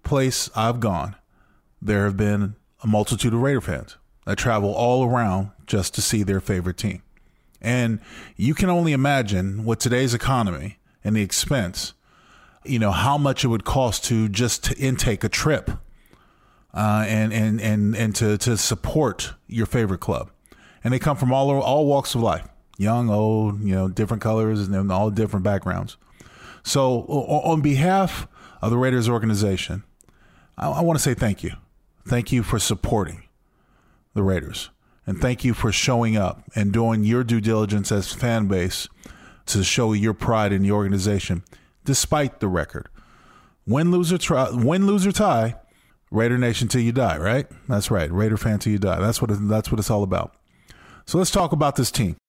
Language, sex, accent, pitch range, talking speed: English, male, American, 100-125 Hz, 170 wpm